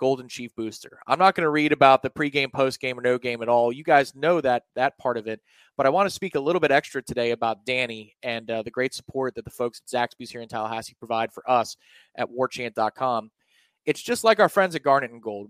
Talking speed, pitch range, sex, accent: 250 wpm, 120-165 Hz, male, American